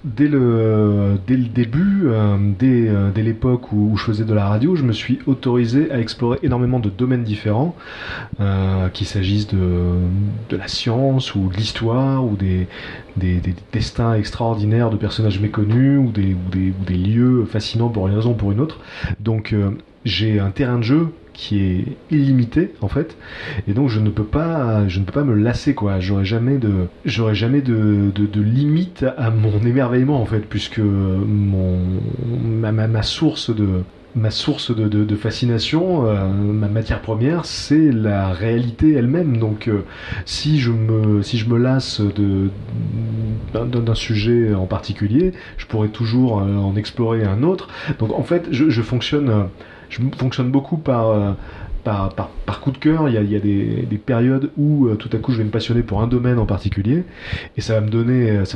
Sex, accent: male, French